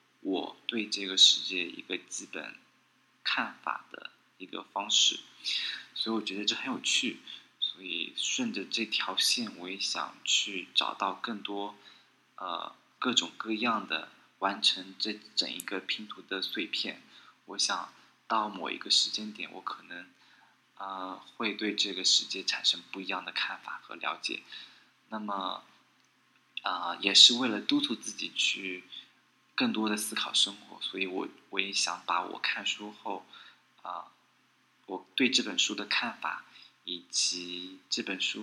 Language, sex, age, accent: Chinese, male, 20-39, native